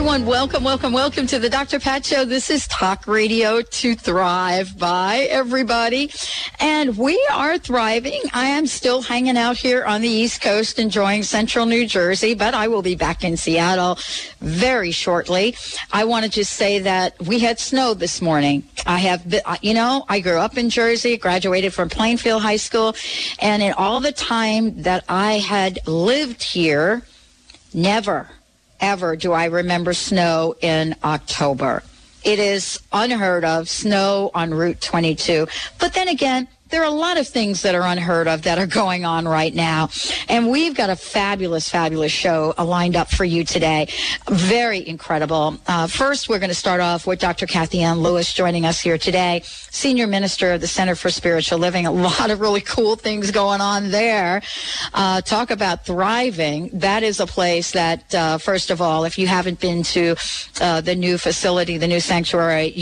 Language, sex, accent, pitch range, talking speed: English, female, American, 170-230 Hz, 180 wpm